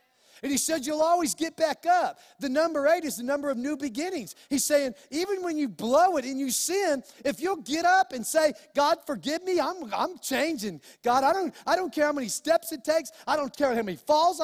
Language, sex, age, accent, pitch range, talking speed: English, male, 40-59, American, 235-310 Hz, 235 wpm